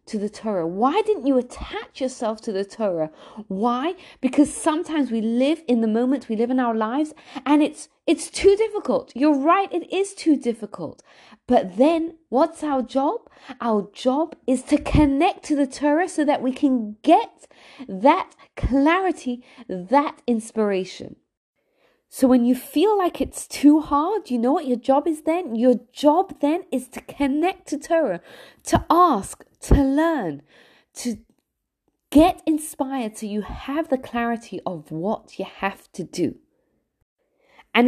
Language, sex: English, female